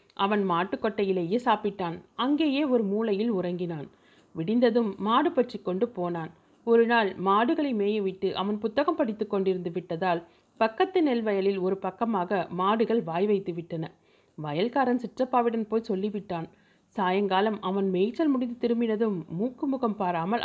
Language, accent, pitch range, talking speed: Tamil, native, 180-235 Hz, 120 wpm